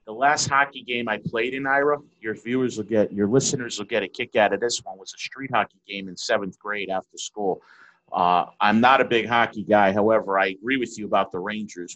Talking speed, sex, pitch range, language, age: 235 wpm, male, 95-115 Hz, English, 30-49